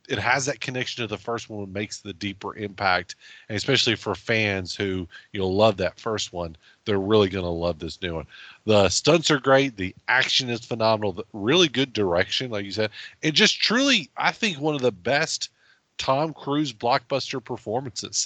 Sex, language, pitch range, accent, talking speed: male, English, 100-140 Hz, American, 195 wpm